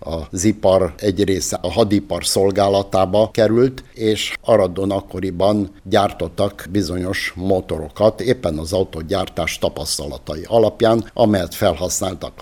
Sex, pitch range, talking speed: male, 85-105 Hz, 100 wpm